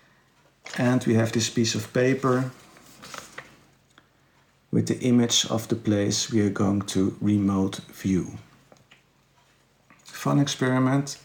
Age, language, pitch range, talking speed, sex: 50-69, English, 110-130 Hz, 110 wpm, male